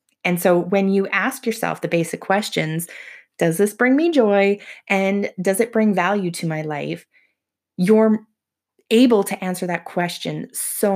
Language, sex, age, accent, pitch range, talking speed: English, female, 20-39, American, 175-225 Hz, 160 wpm